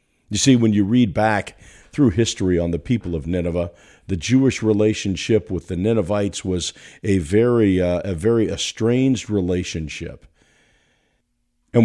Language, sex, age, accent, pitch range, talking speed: English, male, 50-69, American, 90-125 Hz, 140 wpm